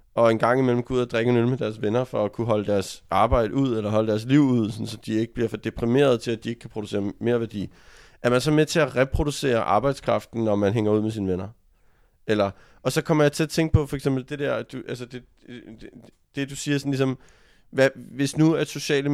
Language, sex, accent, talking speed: Danish, male, native, 265 wpm